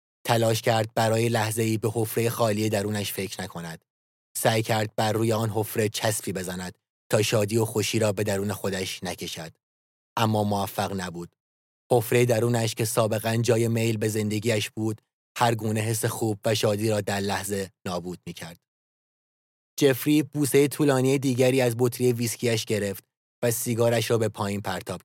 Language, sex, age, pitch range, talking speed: English, male, 30-49, 100-120 Hz, 155 wpm